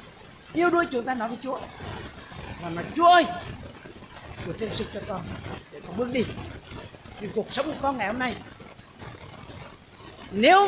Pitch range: 200-310 Hz